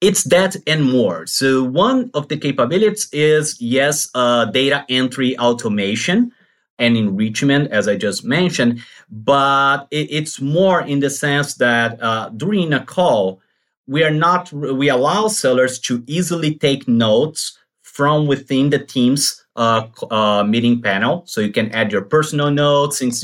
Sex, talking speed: male, 150 wpm